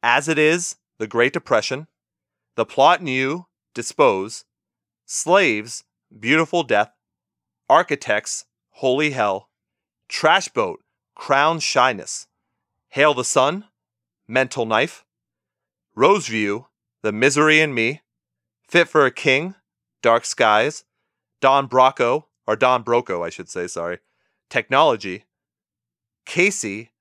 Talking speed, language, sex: 105 wpm, English, male